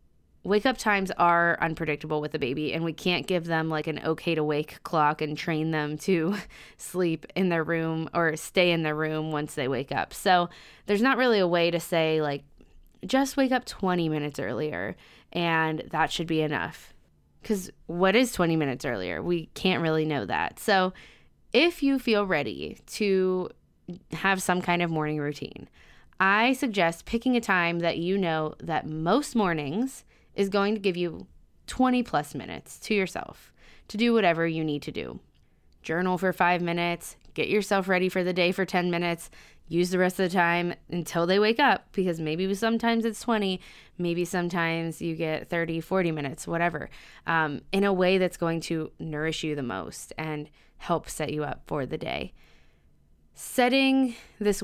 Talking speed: 180 wpm